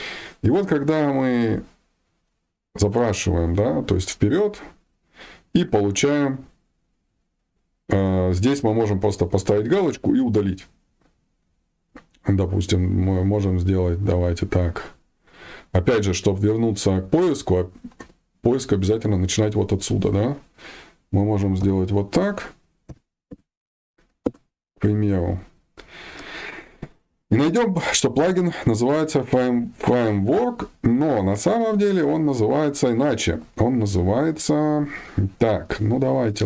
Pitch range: 95-125 Hz